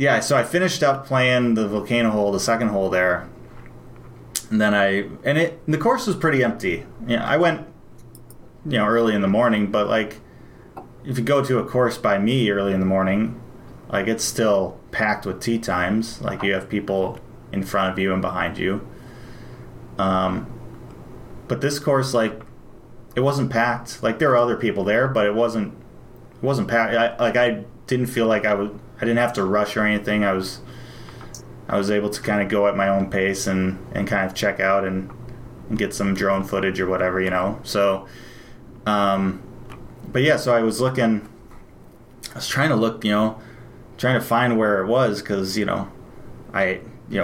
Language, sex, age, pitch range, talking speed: English, male, 20-39, 100-120 Hz, 195 wpm